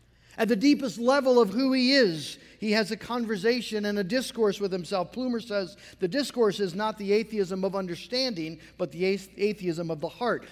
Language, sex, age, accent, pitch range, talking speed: English, male, 50-69, American, 175-225 Hz, 190 wpm